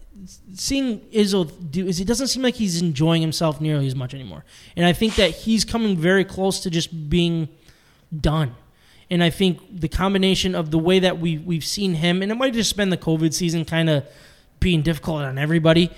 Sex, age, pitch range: male, 20-39, 155-195 Hz